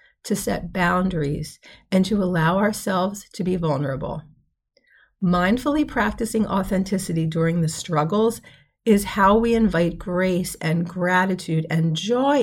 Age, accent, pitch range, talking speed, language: 40-59, American, 165-215 Hz, 120 wpm, English